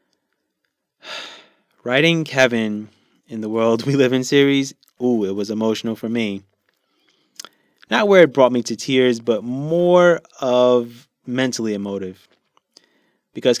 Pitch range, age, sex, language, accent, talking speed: 105-125 Hz, 20-39, male, English, American, 125 wpm